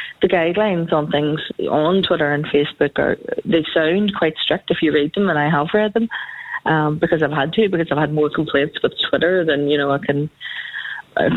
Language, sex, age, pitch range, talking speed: English, female, 30-49, 150-170 Hz, 210 wpm